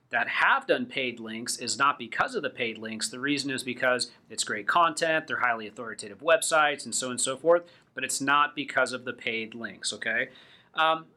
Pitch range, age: 130-165 Hz, 30-49